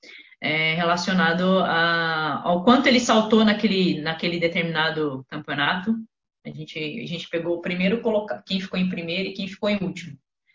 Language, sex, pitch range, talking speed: Portuguese, female, 170-225 Hz, 160 wpm